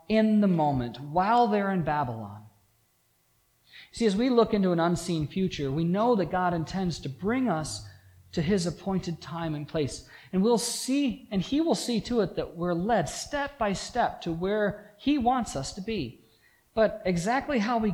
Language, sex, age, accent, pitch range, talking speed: English, male, 40-59, American, 140-225 Hz, 185 wpm